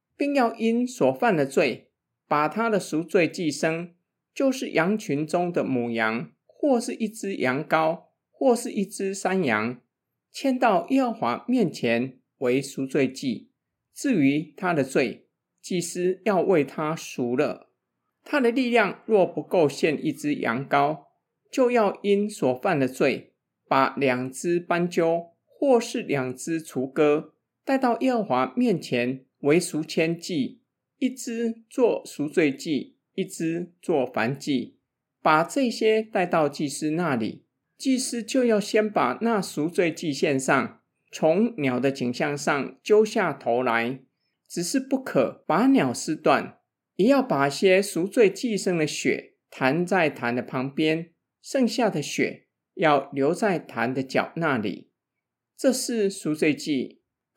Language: Chinese